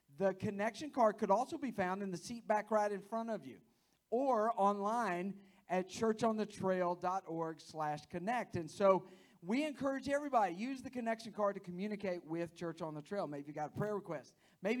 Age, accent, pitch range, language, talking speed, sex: 50-69, American, 160-205 Hz, English, 180 wpm, male